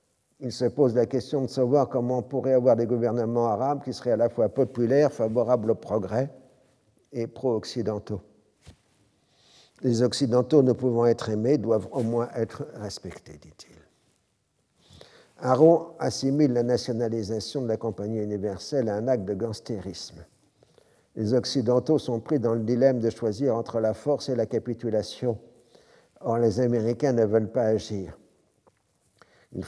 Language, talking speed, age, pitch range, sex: French, 150 wpm, 50-69, 110-130 Hz, male